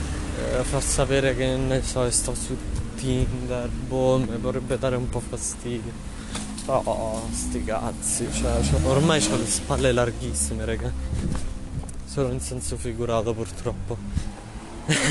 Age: 20-39